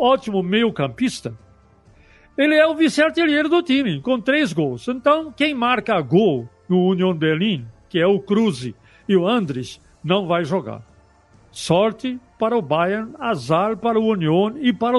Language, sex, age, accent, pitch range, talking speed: Portuguese, male, 60-79, Brazilian, 170-220 Hz, 150 wpm